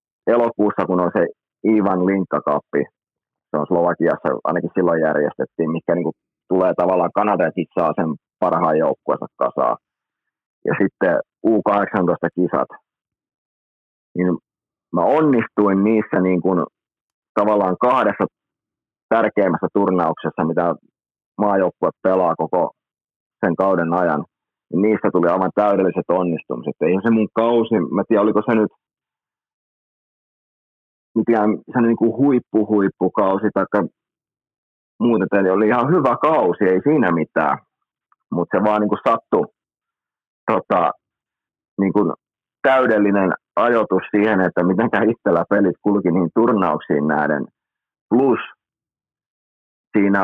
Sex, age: male, 30-49